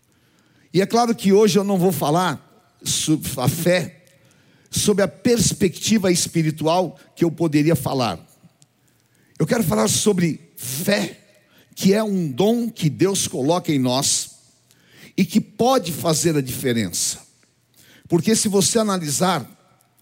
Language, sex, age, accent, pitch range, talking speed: Portuguese, male, 50-69, Brazilian, 155-205 Hz, 130 wpm